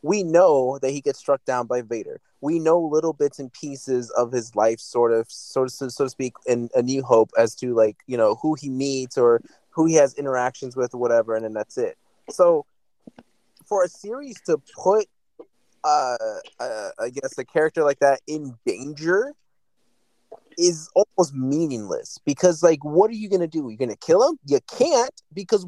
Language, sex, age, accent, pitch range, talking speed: English, male, 30-49, American, 135-195 Hz, 195 wpm